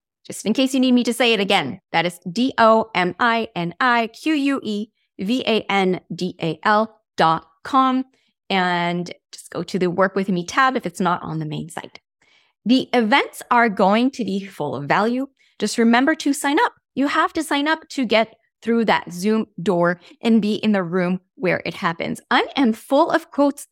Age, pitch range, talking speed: 30-49, 185-260 Hz, 170 wpm